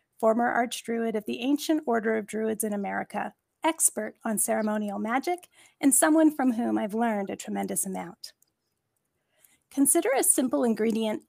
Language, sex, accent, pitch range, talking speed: English, female, American, 210-270 Hz, 145 wpm